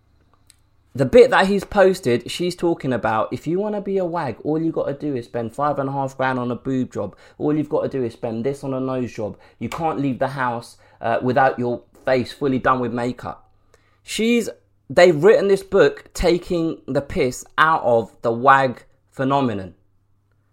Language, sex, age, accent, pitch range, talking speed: English, male, 20-39, British, 105-175 Hz, 200 wpm